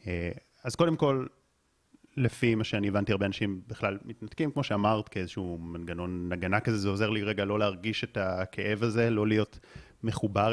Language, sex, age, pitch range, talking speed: Hebrew, male, 30-49, 105-125 Hz, 165 wpm